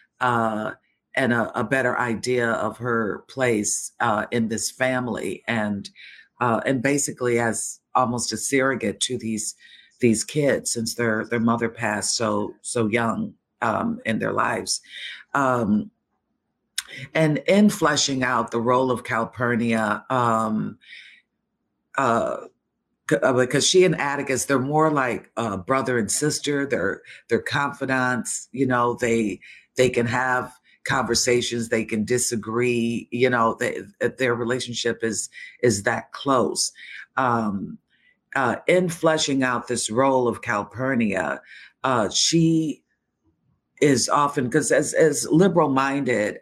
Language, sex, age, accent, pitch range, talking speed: English, female, 50-69, American, 115-135 Hz, 130 wpm